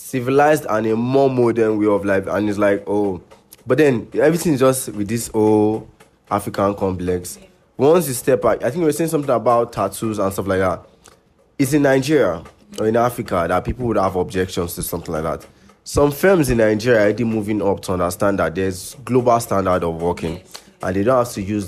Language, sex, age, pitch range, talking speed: English, male, 20-39, 95-115 Hz, 200 wpm